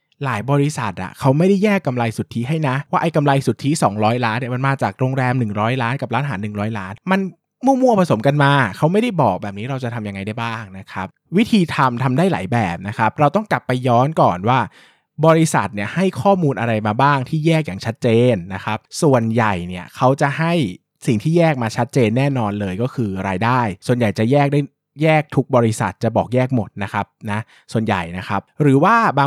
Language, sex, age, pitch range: Thai, male, 20-39, 110-160 Hz